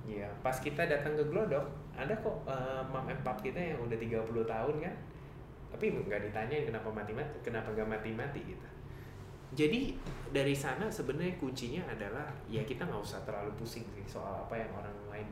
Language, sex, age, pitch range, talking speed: Indonesian, male, 20-39, 110-140 Hz, 180 wpm